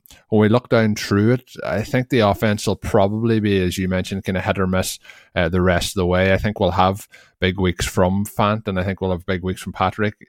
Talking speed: 255 wpm